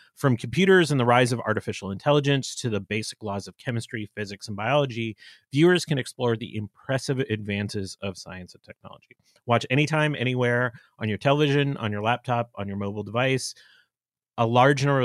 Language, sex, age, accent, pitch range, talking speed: English, male, 30-49, American, 105-130 Hz, 170 wpm